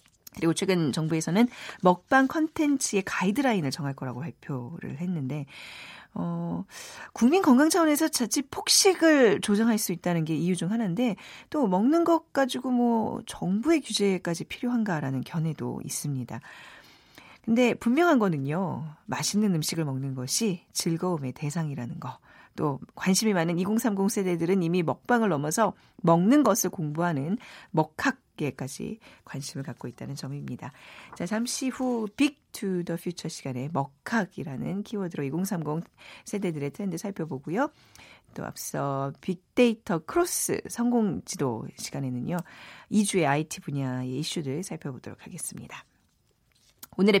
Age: 40-59